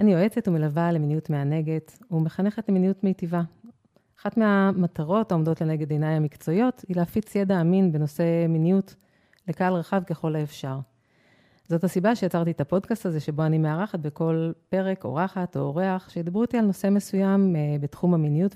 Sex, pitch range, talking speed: female, 155-190 Hz, 145 wpm